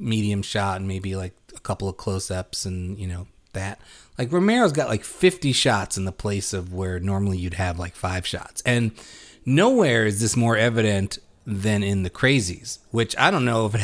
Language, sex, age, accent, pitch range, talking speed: English, male, 30-49, American, 100-165 Hz, 200 wpm